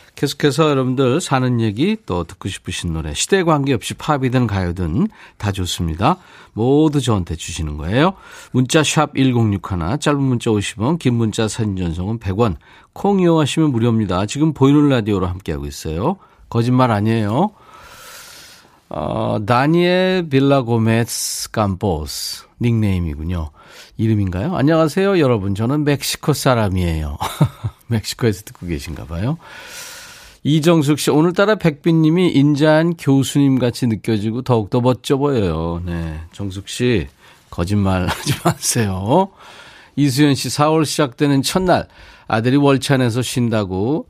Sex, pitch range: male, 105-150 Hz